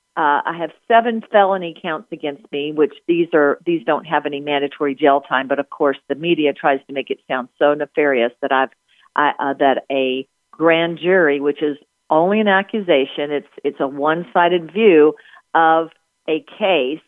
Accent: American